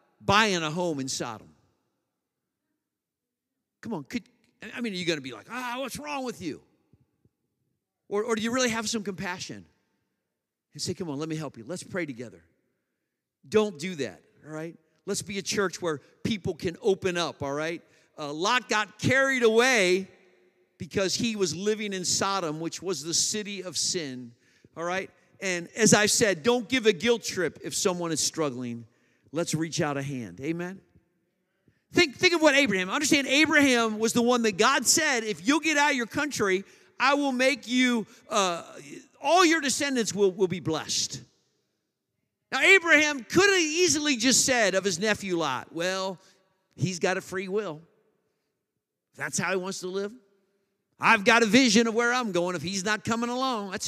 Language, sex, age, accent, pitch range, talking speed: English, male, 50-69, American, 170-240 Hz, 185 wpm